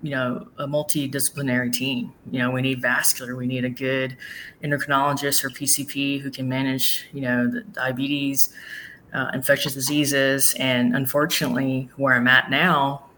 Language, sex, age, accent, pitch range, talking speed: English, female, 20-39, American, 125-145 Hz, 150 wpm